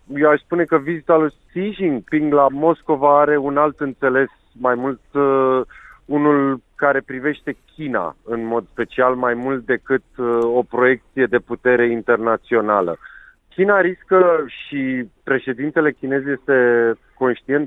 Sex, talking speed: male, 130 wpm